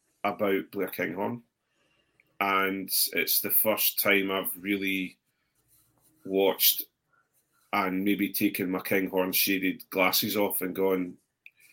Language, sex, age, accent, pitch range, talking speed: English, male, 30-49, British, 95-110 Hz, 110 wpm